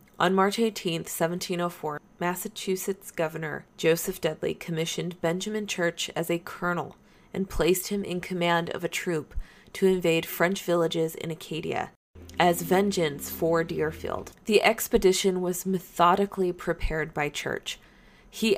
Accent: American